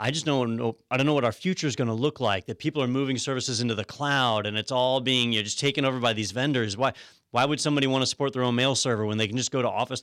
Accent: American